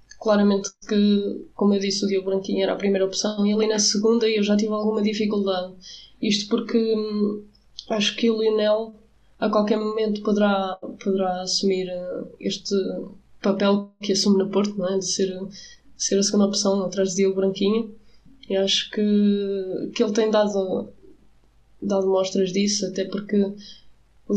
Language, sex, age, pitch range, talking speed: Portuguese, female, 20-39, 195-210 Hz, 160 wpm